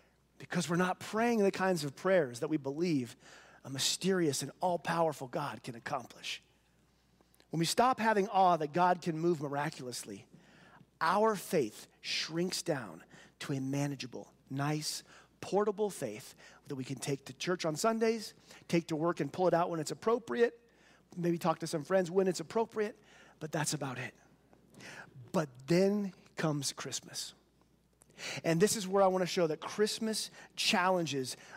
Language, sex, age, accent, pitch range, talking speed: English, male, 40-59, American, 160-225 Hz, 160 wpm